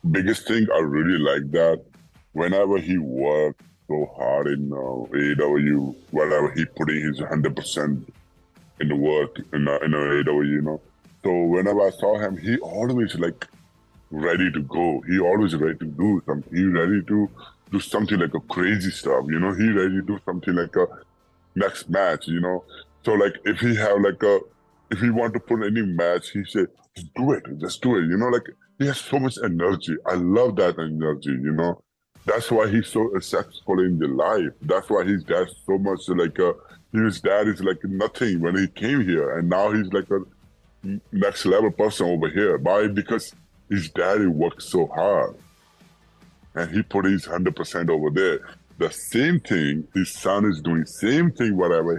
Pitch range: 75-105 Hz